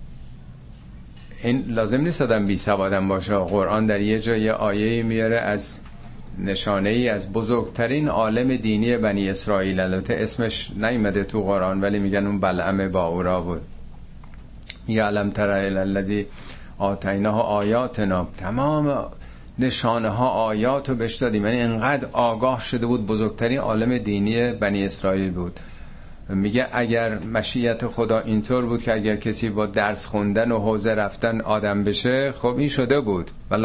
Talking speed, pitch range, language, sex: 135 wpm, 100-120 Hz, Persian, male